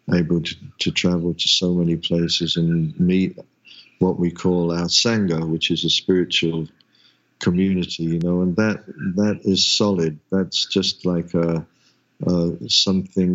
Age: 50-69